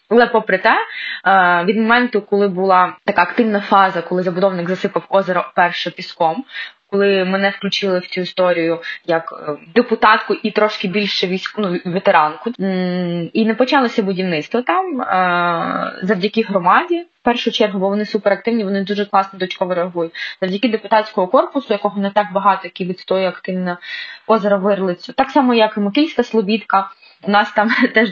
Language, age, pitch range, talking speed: Ukrainian, 20-39, 180-215 Hz, 150 wpm